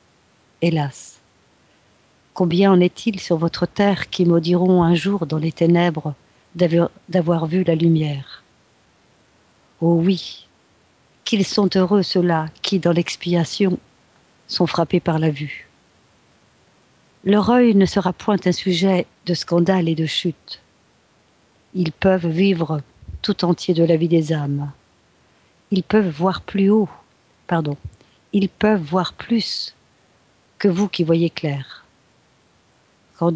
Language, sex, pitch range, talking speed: French, female, 165-195 Hz, 125 wpm